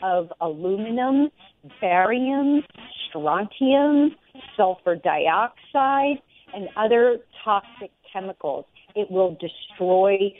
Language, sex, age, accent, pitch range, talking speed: English, female, 50-69, American, 190-260 Hz, 75 wpm